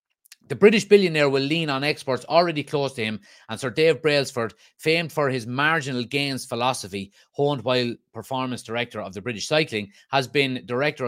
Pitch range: 110-150 Hz